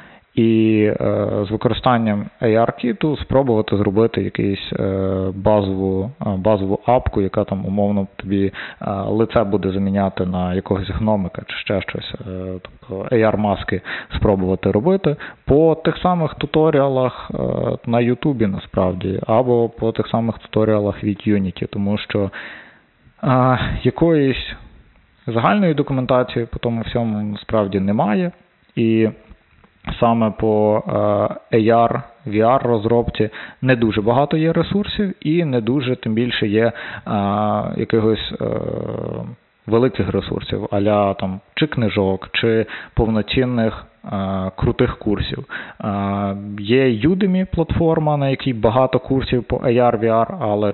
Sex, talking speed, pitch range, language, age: male, 110 wpm, 100-125 Hz, Ukrainian, 20-39